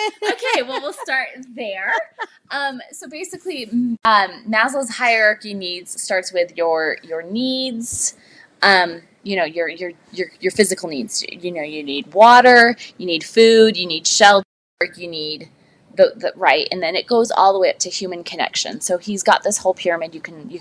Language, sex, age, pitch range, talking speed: English, female, 20-39, 180-240 Hz, 185 wpm